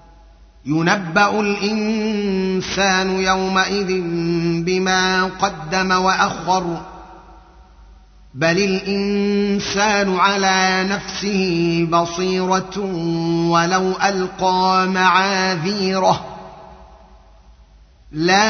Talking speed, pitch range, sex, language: 50 wpm, 170-195 Hz, male, Arabic